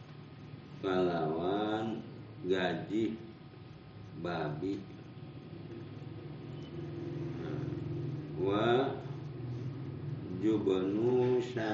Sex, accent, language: male, native, Indonesian